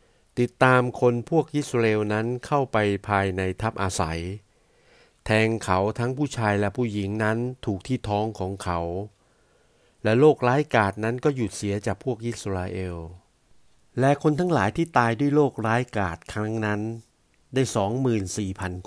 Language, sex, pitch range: Thai, male, 100-120 Hz